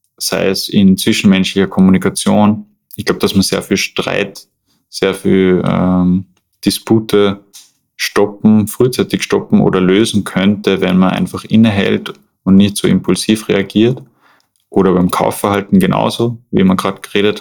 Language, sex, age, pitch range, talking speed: German, male, 20-39, 95-120 Hz, 135 wpm